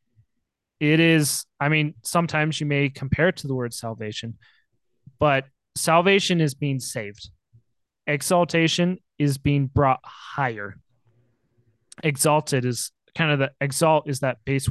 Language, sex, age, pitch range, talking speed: English, male, 20-39, 125-155 Hz, 130 wpm